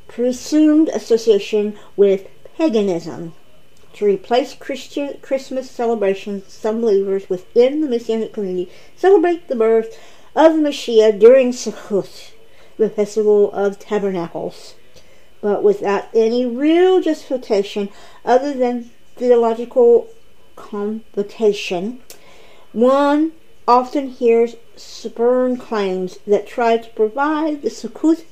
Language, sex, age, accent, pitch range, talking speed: English, female, 50-69, American, 205-275 Hz, 100 wpm